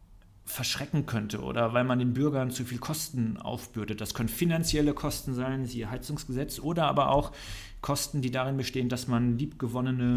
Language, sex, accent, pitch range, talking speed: German, male, German, 110-135 Hz, 165 wpm